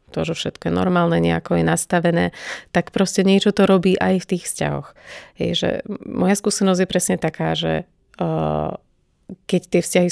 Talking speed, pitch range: 170 wpm, 160-185 Hz